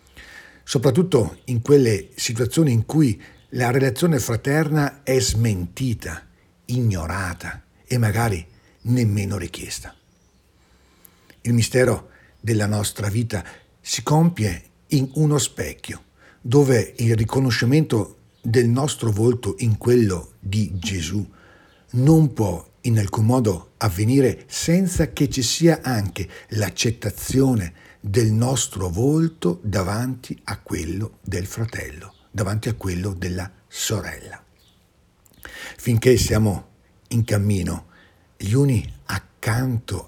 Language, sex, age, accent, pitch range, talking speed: Italian, male, 50-69, native, 95-130 Hz, 100 wpm